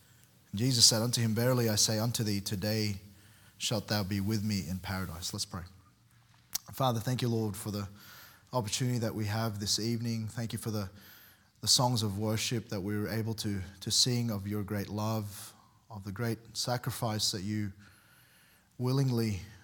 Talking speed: 175 wpm